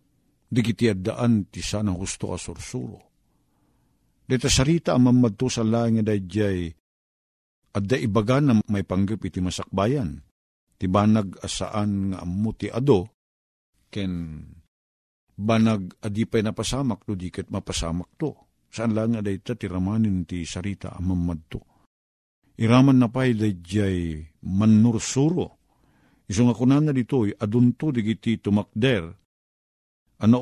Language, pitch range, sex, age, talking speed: Filipino, 90-125 Hz, male, 50-69, 115 wpm